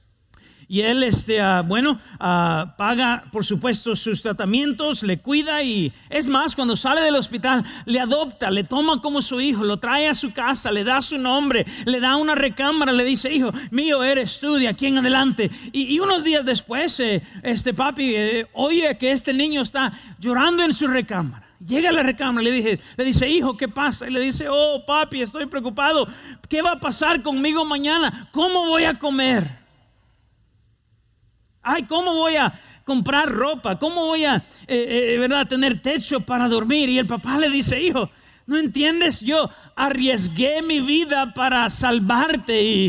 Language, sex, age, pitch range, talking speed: Spanish, male, 40-59, 225-290 Hz, 175 wpm